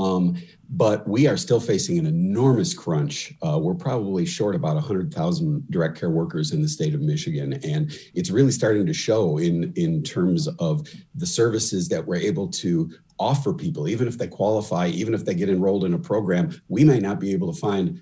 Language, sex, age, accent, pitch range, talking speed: English, male, 40-59, American, 105-165 Hz, 200 wpm